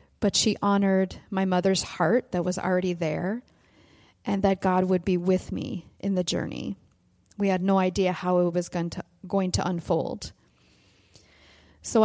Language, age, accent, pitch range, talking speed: English, 30-49, American, 175-195 Hz, 160 wpm